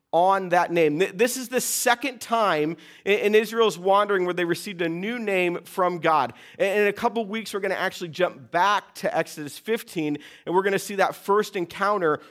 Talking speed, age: 200 wpm, 40-59